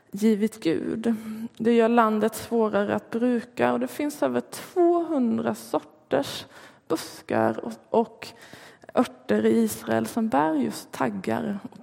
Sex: female